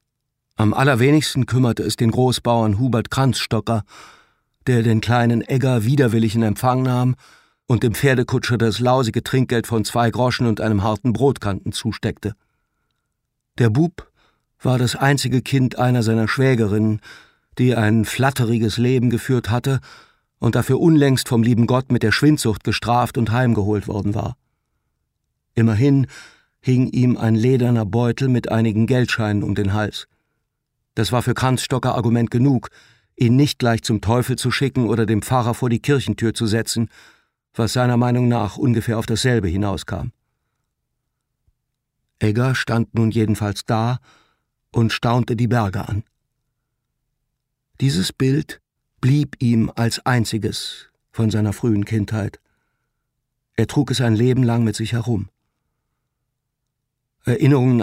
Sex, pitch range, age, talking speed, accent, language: male, 110-130 Hz, 50-69, 135 wpm, German, German